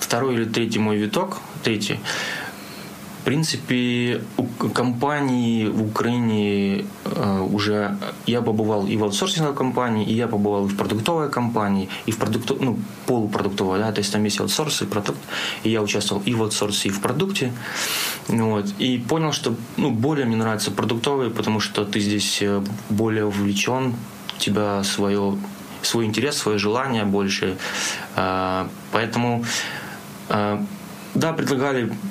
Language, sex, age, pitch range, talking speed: Ukrainian, male, 20-39, 100-120 Hz, 140 wpm